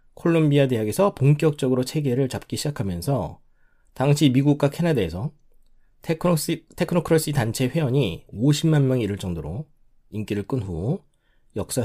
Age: 40-59